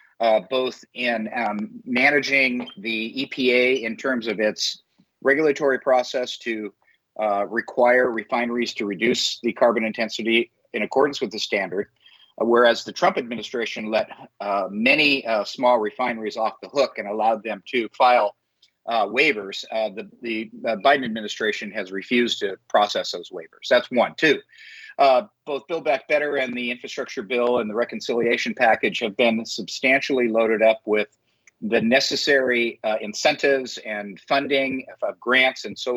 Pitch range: 115-140 Hz